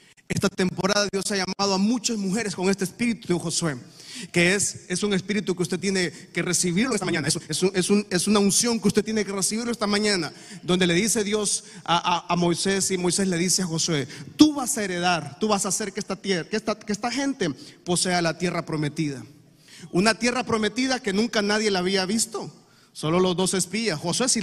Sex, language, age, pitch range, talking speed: male, Spanish, 30-49, 175-210 Hz, 215 wpm